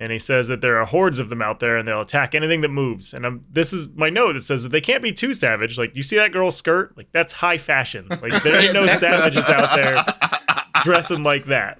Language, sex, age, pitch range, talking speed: English, male, 20-39, 120-150 Hz, 260 wpm